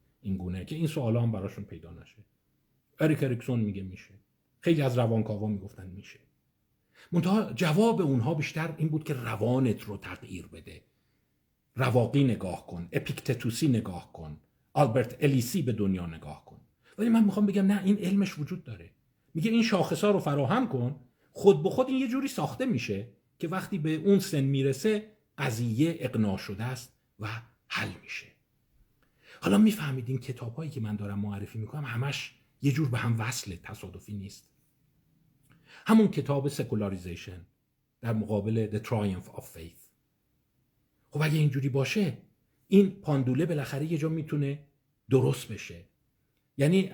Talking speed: 150 wpm